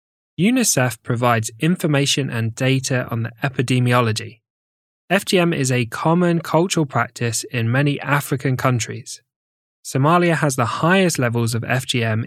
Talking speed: 120 wpm